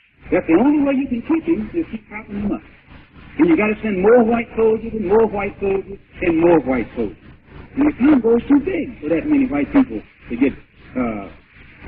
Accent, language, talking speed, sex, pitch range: American, English, 220 wpm, male, 195-280 Hz